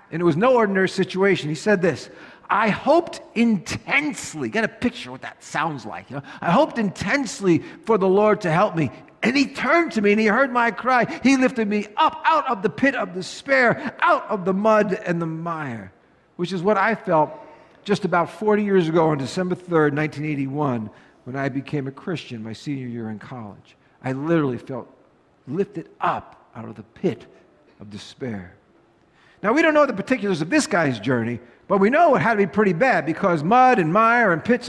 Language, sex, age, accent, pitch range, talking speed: English, male, 50-69, American, 165-235 Hz, 200 wpm